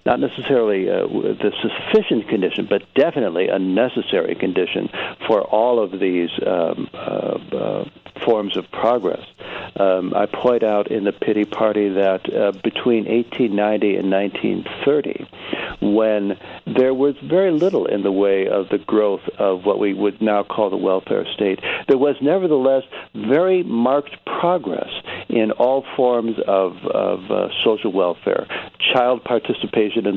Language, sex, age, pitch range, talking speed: English, male, 60-79, 100-135 Hz, 145 wpm